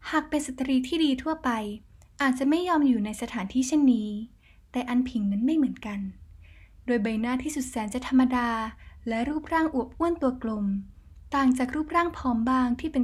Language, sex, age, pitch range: Thai, female, 10-29, 215-275 Hz